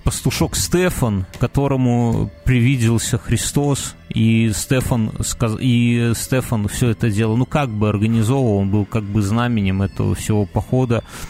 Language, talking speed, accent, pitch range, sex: Russian, 125 wpm, native, 110-135 Hz, male